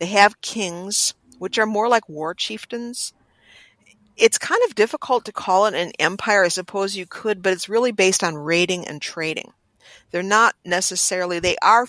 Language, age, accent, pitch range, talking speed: English, 50-69, American, 155-195 Hz, 175 wpm